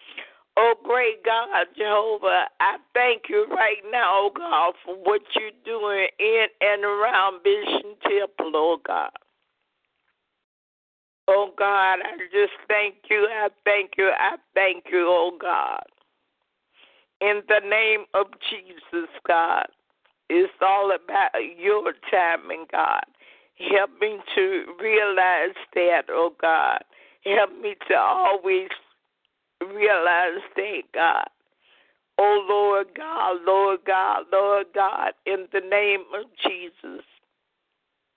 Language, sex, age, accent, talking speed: English, female, 50-69, American, 115 wpm